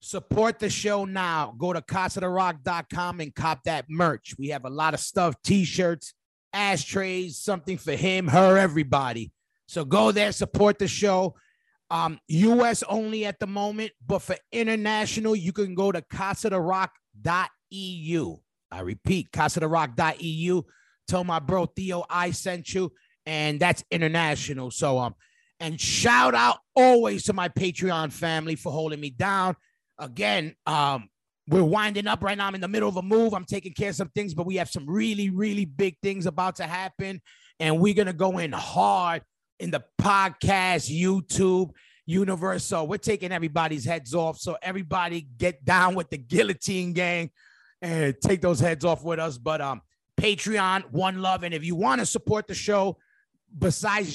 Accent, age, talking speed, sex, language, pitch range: American, 30-49, 165 wpm, male, English, 160-195 Hz